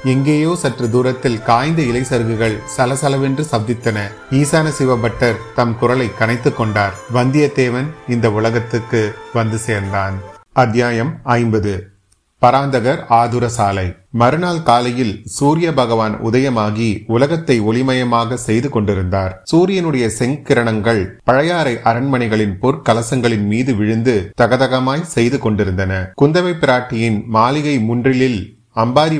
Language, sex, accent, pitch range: Tamil, male, native, 110-130 Hz